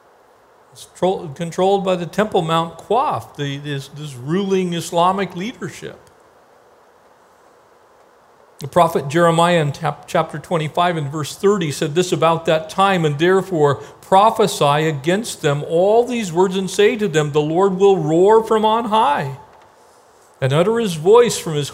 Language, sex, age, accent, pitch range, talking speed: English, male, 50-69, American, 150-195 Hz, 145 wpm